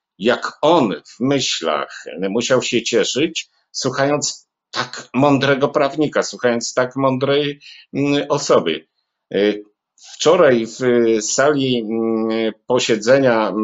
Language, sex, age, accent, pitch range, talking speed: Polish, male, 50-69, native, 115-145 Hz, 85 wpm